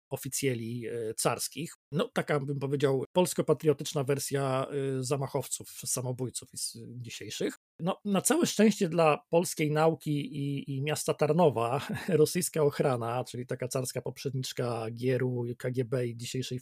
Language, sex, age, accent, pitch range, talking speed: Polish, male, 40-59, native, 125-155 Hz, 115 wpm